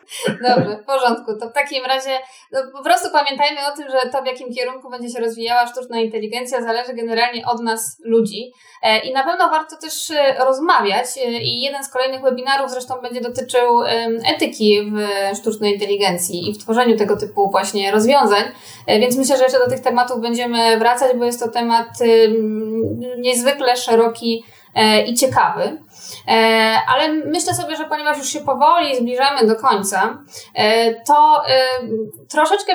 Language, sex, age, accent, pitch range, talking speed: Polish, female, 20-39, native, 230-275 Hz, 150 wpm